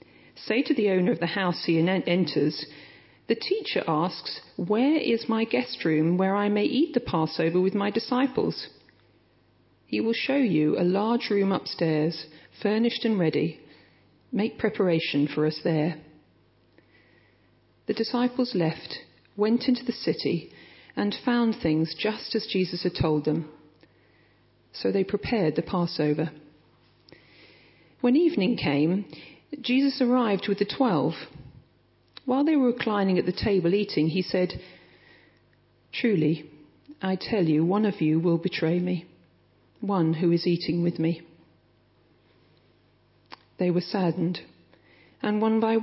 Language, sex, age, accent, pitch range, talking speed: English, female, 40-59, British, 155-210 Hz, 135 wpm